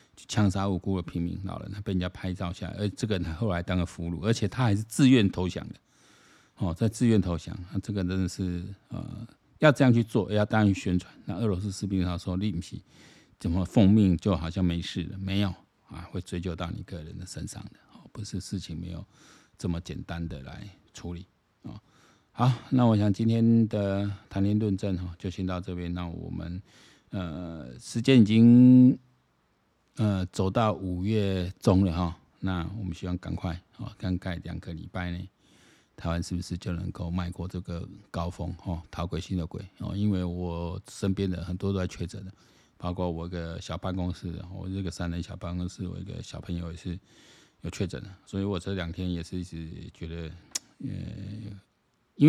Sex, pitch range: male, 85-105 Hz